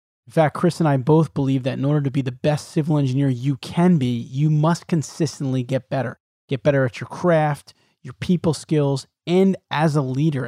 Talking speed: 205 wpm